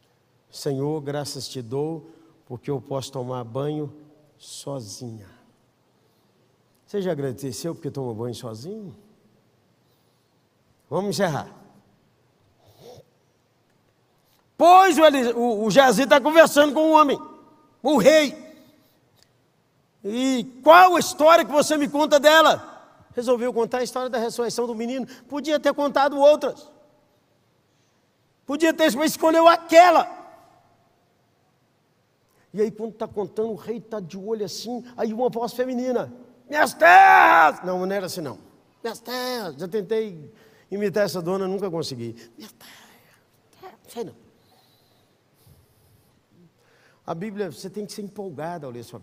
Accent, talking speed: Brazilian, 130 wpm